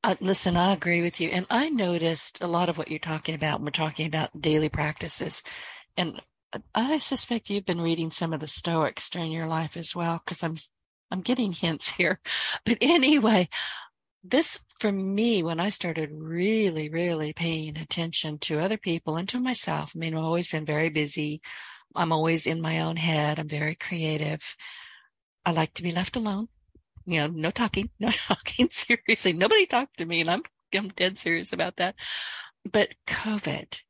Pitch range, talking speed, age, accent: 155-185 Hz, 180 wpm, 50-69, American